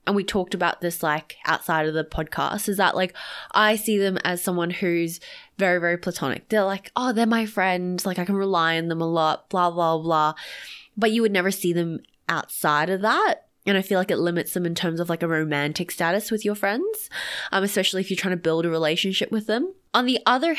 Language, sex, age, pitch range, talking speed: English, female, 20-39, 170-210 Hz, 230 wpm